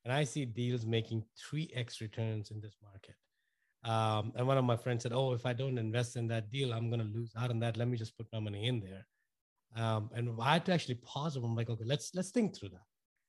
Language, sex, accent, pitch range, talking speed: English, male, Indian, 125-175 Hz, 255 wpm